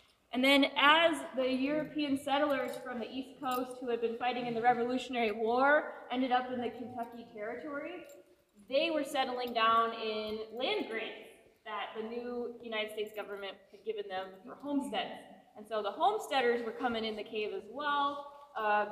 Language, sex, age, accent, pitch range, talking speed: English, female, 20-39, American, 215-275 Hz, 170 wpm